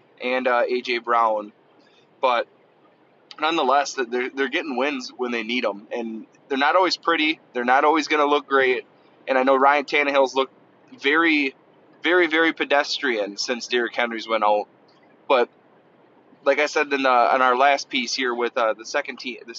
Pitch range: 120-145 Hz